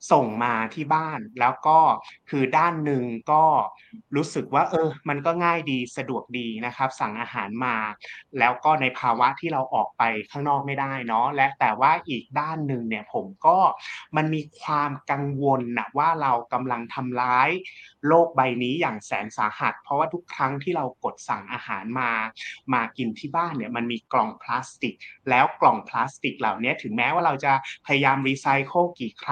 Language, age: Thai, 30-49